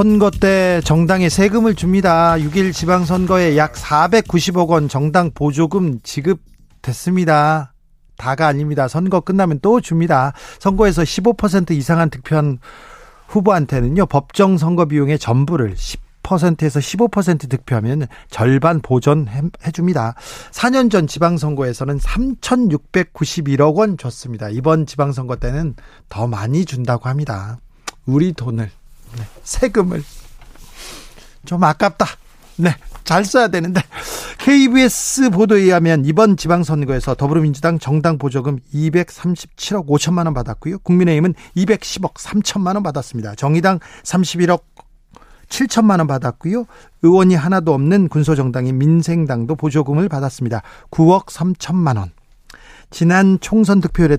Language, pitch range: Korean, 140-185 Hz